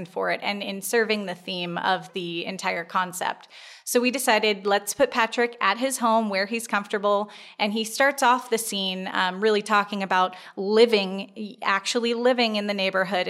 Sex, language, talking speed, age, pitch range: female, English, 175 wpm, 20-39, 190-225 Hz